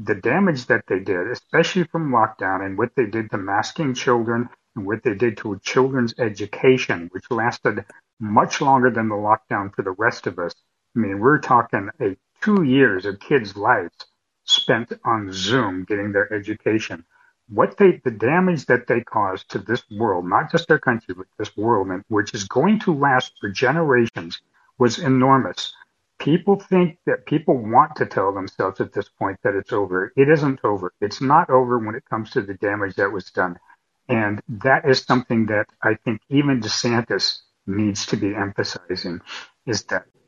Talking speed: 180 wpm